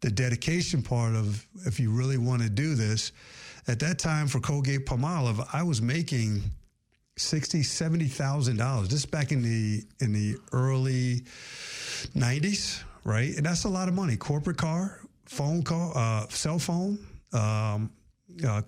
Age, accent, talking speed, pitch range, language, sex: 50-69, American, 155 wpm, 110-140 Hz, English, male